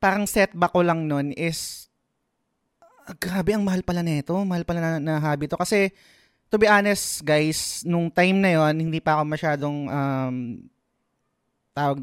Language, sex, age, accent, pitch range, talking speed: Filipino, male, 20-39, native, 140-185 Hz, 155 wpm